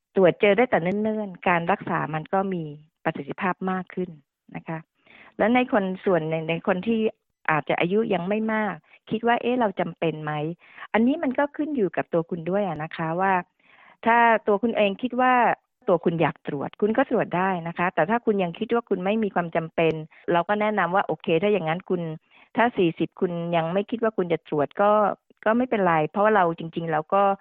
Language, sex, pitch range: Thai, female, 160-210 Hz